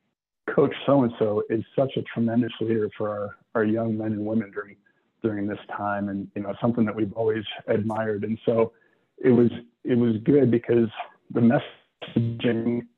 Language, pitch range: English, 110-120 Hz